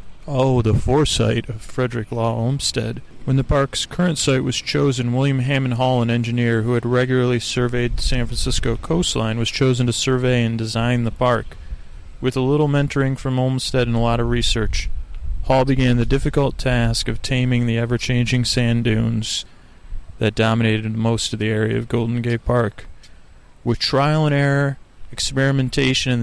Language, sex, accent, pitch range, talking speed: English, male, American, 115-130 Hz, 165 wpm